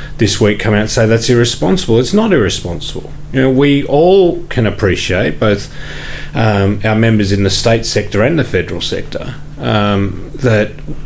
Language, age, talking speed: English, 40-59, 170 wpm